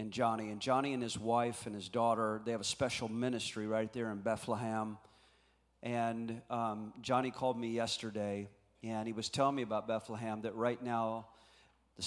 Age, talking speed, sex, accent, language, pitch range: 40-59, 180 wpm, male, American, English, 110-125 Hz